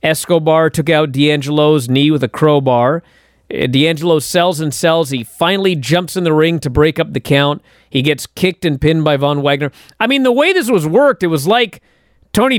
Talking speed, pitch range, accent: 200 wpm, 125-170 Hz, American